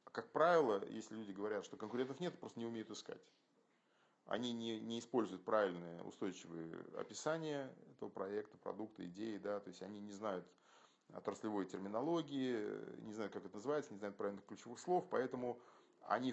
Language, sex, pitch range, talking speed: Russian, male, 100-135 Hz, 160 wpm